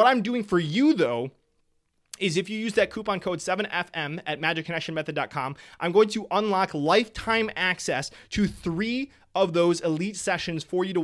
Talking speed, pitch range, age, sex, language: 170 wpm, 155-190 Hz, 20-39, male, English